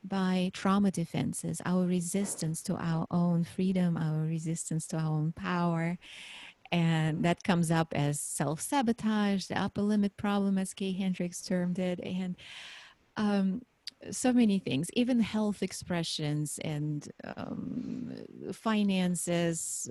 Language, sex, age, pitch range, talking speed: English, female, 30-49, 175-225 Hz, 125 wpm